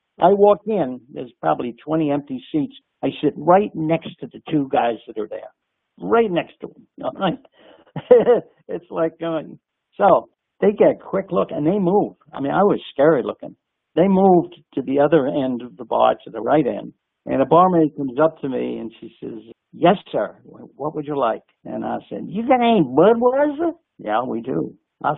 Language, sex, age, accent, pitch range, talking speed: English, male, 60-79, American, 140-230 Hz, 195 wpm